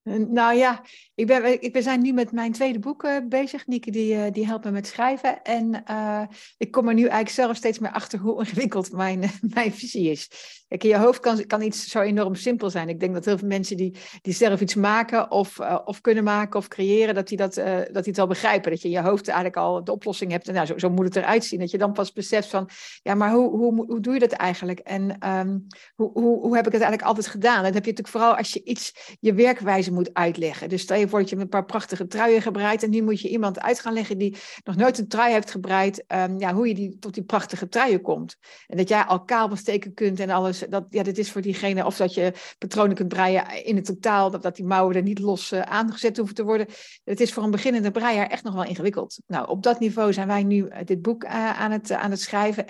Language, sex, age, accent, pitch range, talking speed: Dutch, female, 60-79, Dutch, 195-225 Hz, 265 wpm